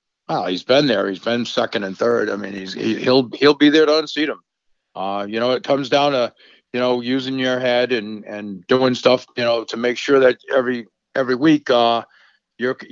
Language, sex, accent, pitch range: English, male, American, 115-145 Hz